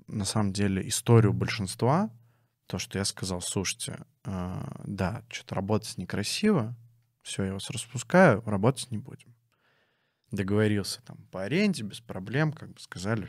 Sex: male